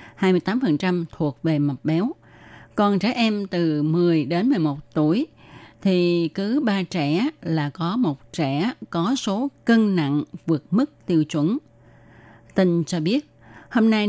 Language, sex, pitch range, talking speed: Vietnamese, female, 145-195 Hz, 145 wpm